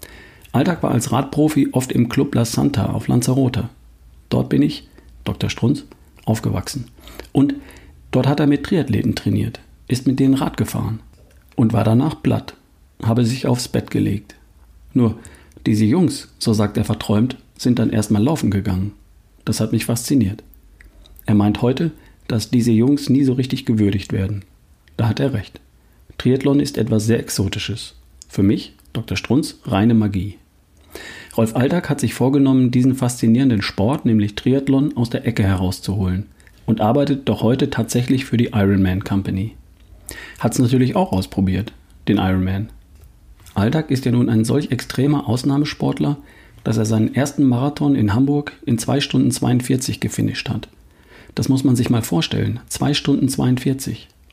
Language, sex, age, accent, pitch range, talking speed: German, male, 50-69, German, 100-130 Hz, 155 wpm